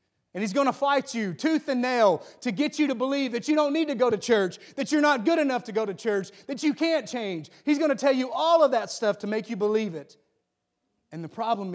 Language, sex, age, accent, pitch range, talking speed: English, male, 30-49, American, 165-230 Hz, 265 wpm